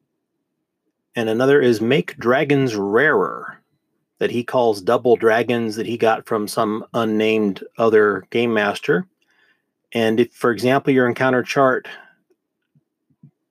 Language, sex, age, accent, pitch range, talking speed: English, male, 30-49, American, 110-150 Hz, 120 wpm